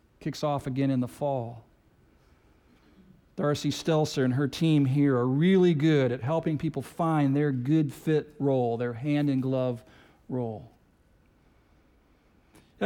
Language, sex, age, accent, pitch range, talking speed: English, male, 50-69, American, 160-235 Hz, 120 wpm